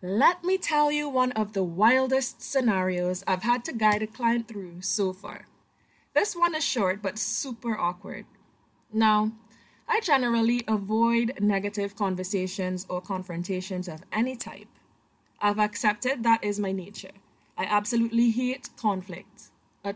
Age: 20-39